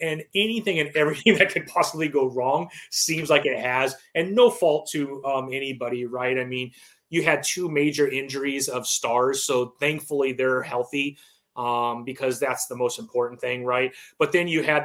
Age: 30-49